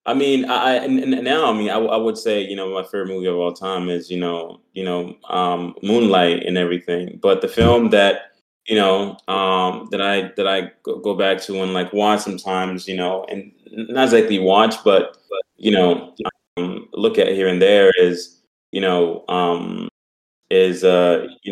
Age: 20-39